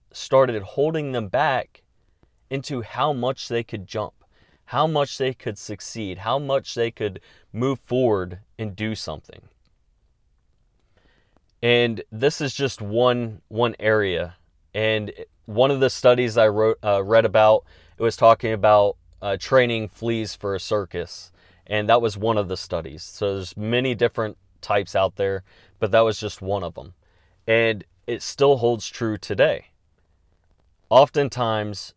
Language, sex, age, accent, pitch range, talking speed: English, male, 30-49, American, 95-120 Hz, 150 wpm